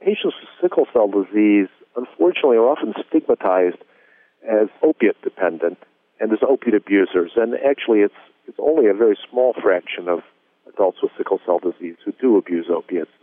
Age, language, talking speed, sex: 50-69, English, 155 wpm, male